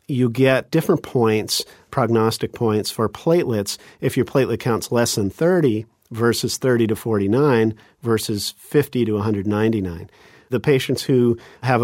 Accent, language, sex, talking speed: American, English, male, 135 wpm